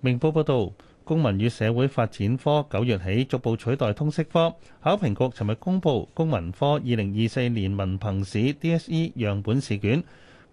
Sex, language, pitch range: male, Chinese, 110-155 Hz